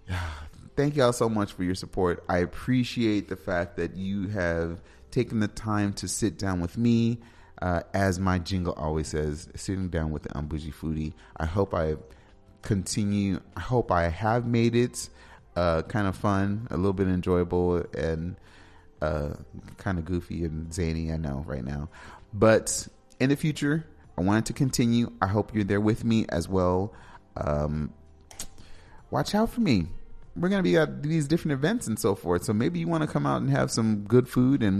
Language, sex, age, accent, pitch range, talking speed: English, male, 30-49, American, 85-110 Hz, 190 wpm